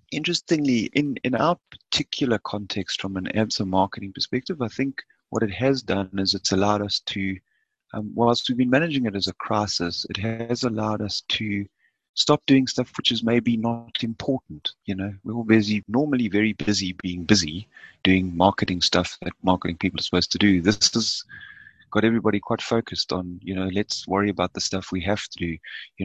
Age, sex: 30-49, male